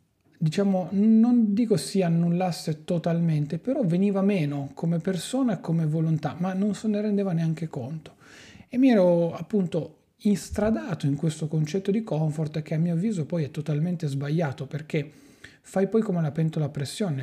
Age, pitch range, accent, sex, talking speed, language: 40-59, 145-170 Hz, native, male, 165 wpm, Italian